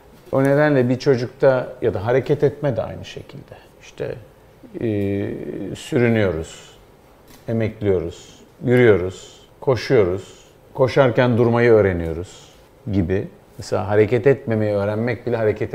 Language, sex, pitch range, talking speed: Turkish, male, 100-130 Hz, 105 wpm